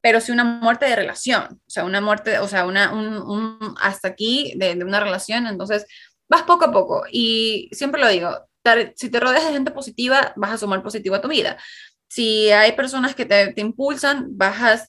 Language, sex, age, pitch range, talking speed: Spanish, female, 20-39, 200-250 Hz, 215 wpm